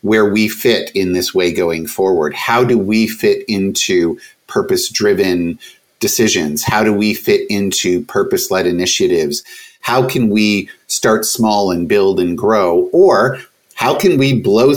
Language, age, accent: English, 50-69, American